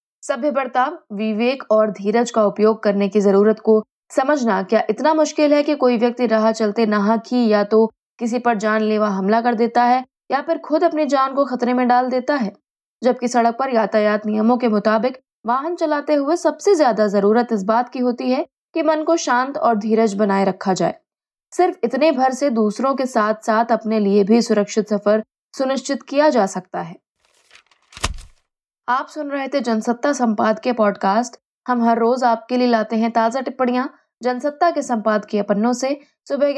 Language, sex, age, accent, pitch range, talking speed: Hindi, female, 20-39, native, 215-275 Hz, 180 wpm